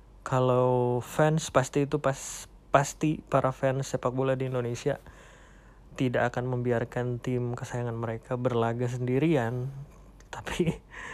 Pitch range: 120-140 Hz